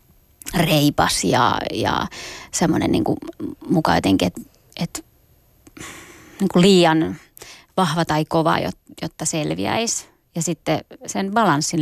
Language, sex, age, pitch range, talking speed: Finnish, female, 20-39, 160-180 Hz, 105 wpm